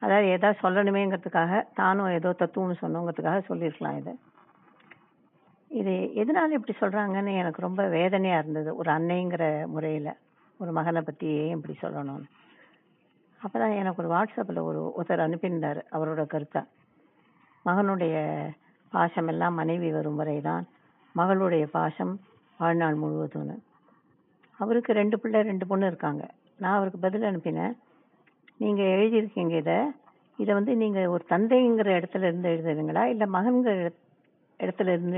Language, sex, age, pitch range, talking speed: Tamil, female, 50-69, 160-200 Hz, 120 wpm